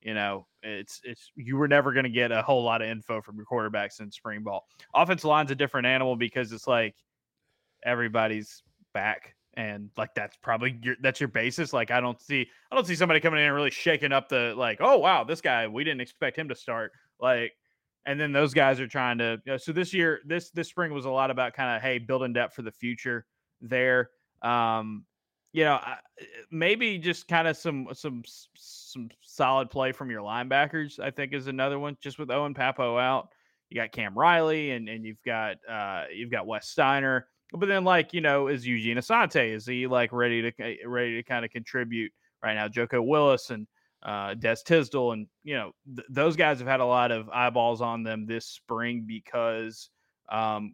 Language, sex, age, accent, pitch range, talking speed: English, male, 20-39, American, 115-140 Hz, 205 wpm